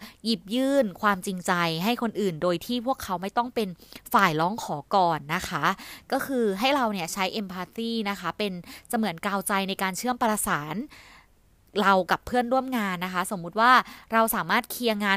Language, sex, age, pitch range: Thai, female, 20-39, 190-240 Hz